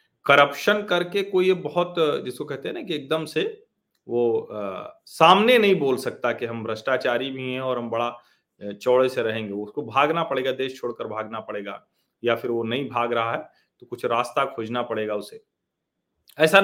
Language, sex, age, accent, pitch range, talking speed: Hindi, male, 40-59, native, 115-155 Hz, 175 wpm